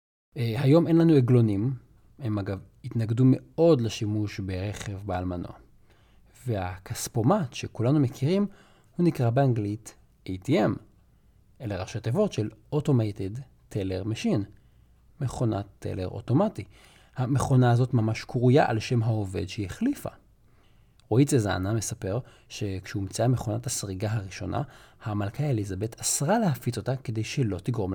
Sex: male